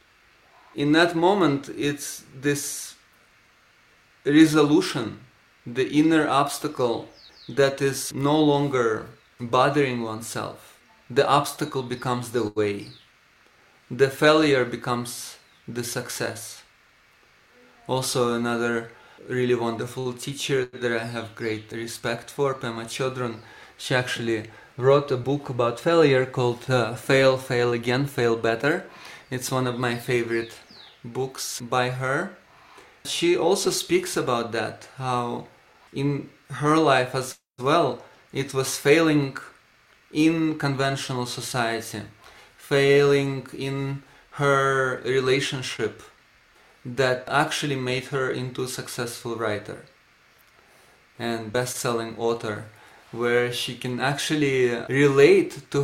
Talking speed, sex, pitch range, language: 105 wpm, male, 120-140 Hz, English